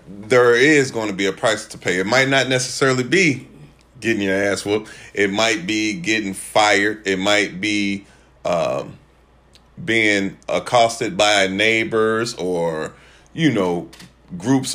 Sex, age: male, 30-49